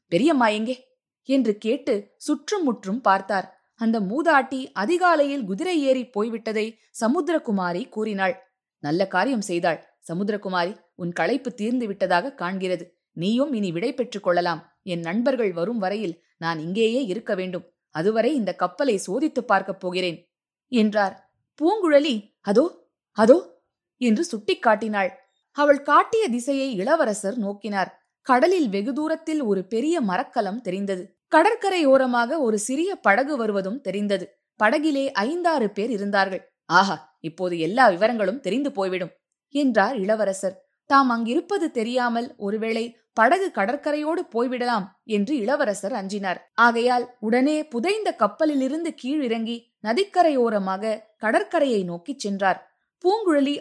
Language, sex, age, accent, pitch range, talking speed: Tamil, female, 20-39, native, 195-275 Hz, 110 wpm